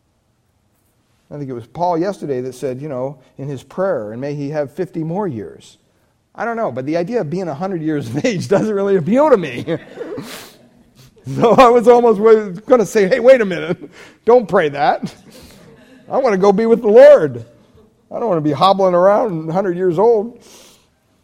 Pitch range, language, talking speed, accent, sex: 145-225 Hz, English, 195 wpm, American, male